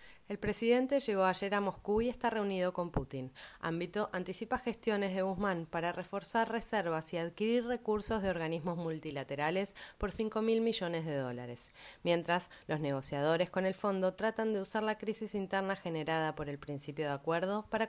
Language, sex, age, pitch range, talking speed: Spanish, female, 20-39, 160-215 Hz, 165 wpm